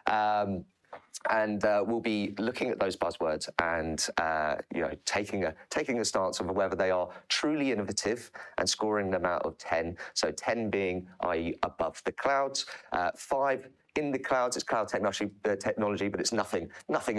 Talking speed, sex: 180 wpm, male